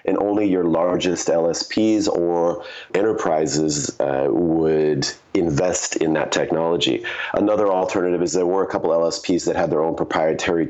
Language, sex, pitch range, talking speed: English, male, 80-95 Hz, 145 wpm